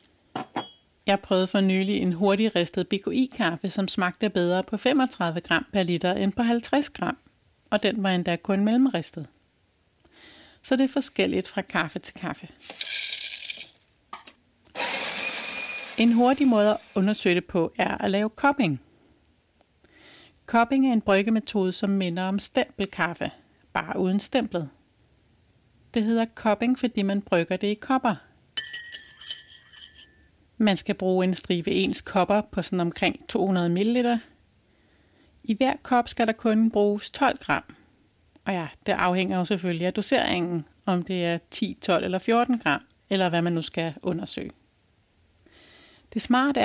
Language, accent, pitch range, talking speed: Danish, native, 185-240 Hz, 140 wpm